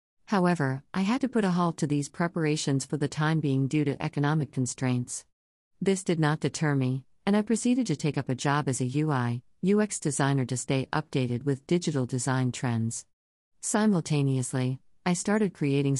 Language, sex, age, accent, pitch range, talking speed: English, female, 50-69, American, 130-160 Hz, 175 wpm